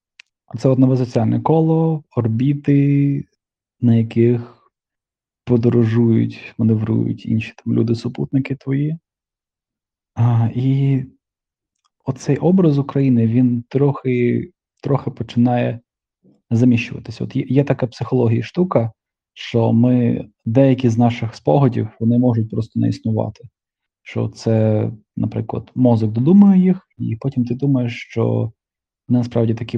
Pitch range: 110-130 Hz